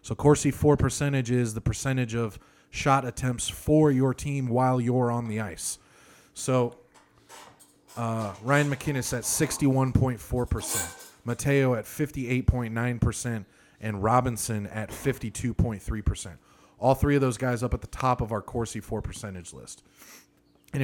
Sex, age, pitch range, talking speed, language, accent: male, 30-49, 110-135 Hz, 135 wpm, English, American